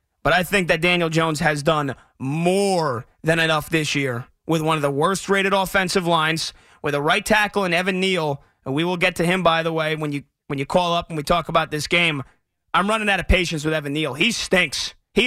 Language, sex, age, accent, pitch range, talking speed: English, male, 30-49, American, 150-190 Hz, 230 wpm